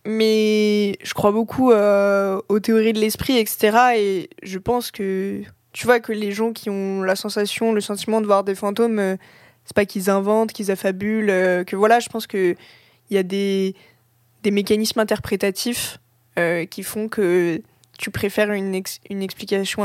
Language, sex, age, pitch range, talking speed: French, female, 20-39, 190-215 Hz, 175 wpm